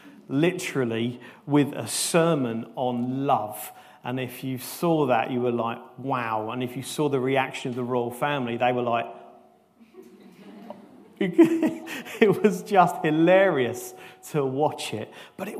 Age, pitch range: 40-59, 130-180 Hz